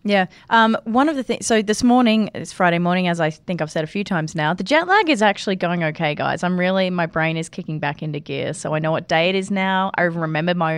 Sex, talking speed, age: female, 280 wpm, 20-39